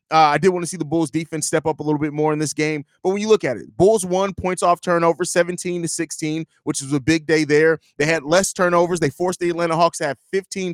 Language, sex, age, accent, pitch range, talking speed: English, male, 20-39, American, 160-195 Hz, 280 wpm